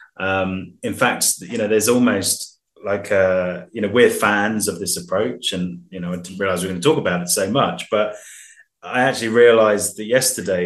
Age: 20-39